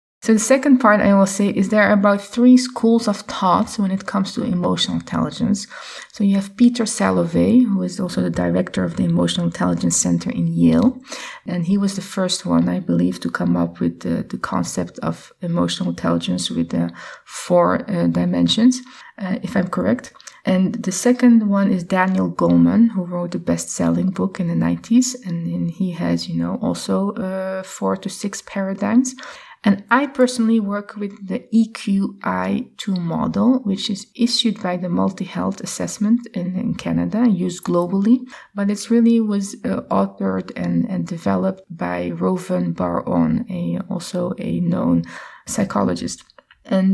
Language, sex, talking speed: English, female, 165 wpm